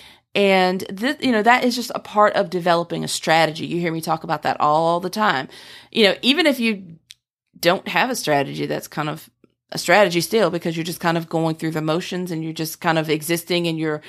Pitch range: 160-200 Hz